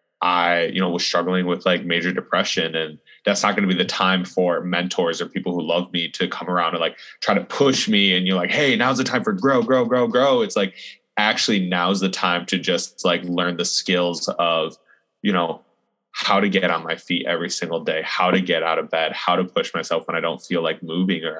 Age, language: 20-39, English